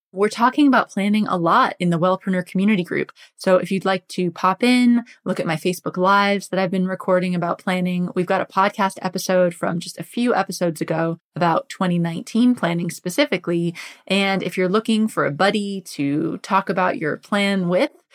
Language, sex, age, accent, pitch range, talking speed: English, female, 20-39, American, 175-210 Hz, 190 wpm